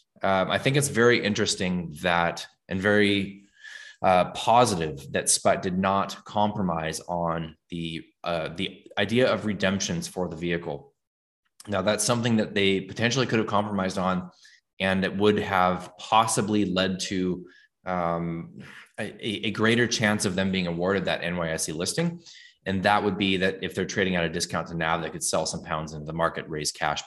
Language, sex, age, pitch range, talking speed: English, male, 20-39, 85-105 Hz, 175 wpm